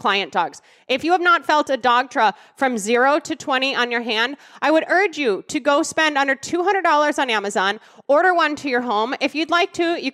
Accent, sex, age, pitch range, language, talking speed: American, female, 20-39, 235-295 Hz, English, 225 wpm